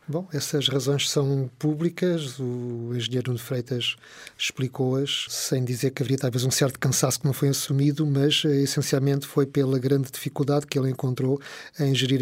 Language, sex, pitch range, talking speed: Portuguese, male, 130-150 Hz, 160 wpm